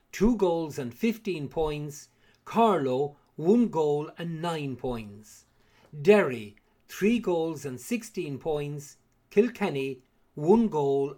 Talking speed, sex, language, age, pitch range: 105 wpm, male, English, 50-69, 125-180 Hz